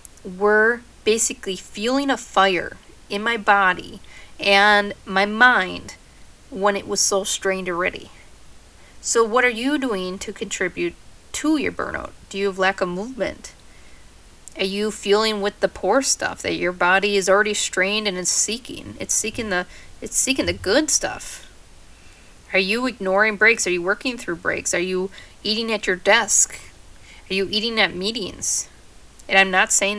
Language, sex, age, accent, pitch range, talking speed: English, female, 30-49, American, 185-220 Hz, 160 wpm